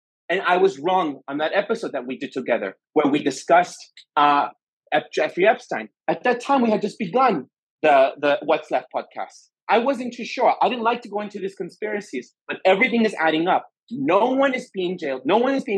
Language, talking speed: English, 210 wpm